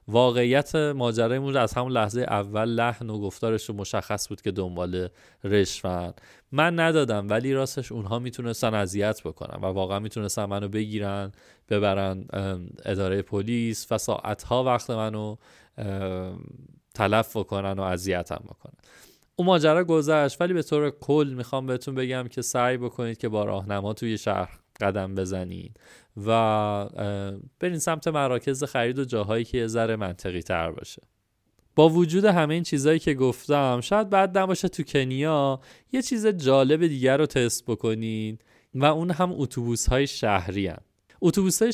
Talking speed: 140 wpm